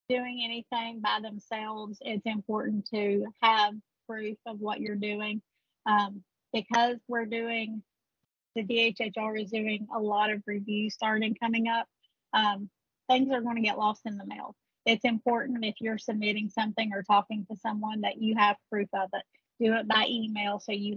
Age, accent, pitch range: 30-49, American, 210-230 Hz